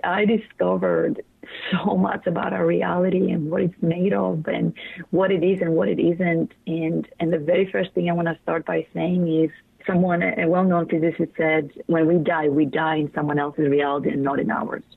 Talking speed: 205 wpm